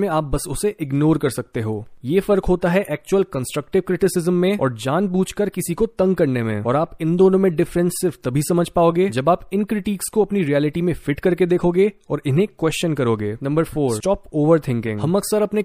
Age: 20-39